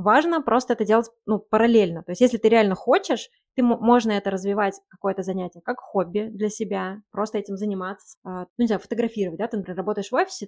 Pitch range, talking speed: 190-235 Hz, 190 wpm